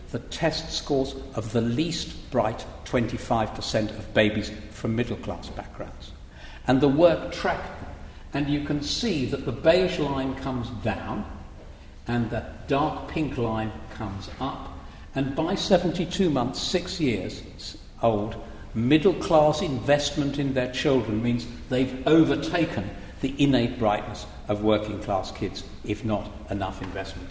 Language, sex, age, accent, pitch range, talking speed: English, male, 60-79, British, 100-135 Hz, 130 wpm